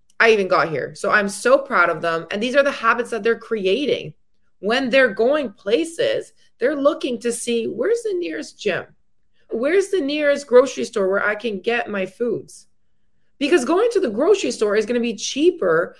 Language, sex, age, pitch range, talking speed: English, female, 20-39, 205-300 Hz, 195 wpm